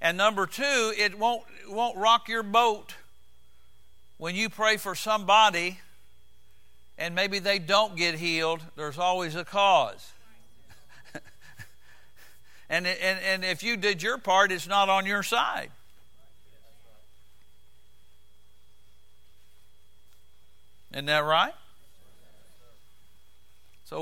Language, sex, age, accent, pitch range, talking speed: English, male, 60-79, American, 145-205 Hz, 100 wpm